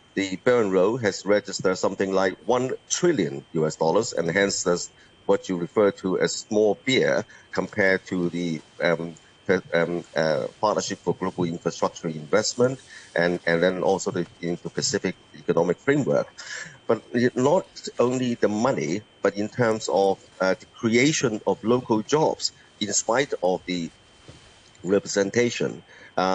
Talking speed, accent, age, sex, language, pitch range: 145 wpm, Malaysian, 50-69, male, English, 90-115 Hz